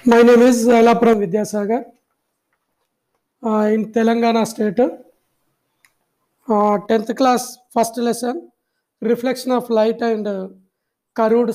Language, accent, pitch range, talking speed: English, Indian, 220-250 Hz, 100 wpm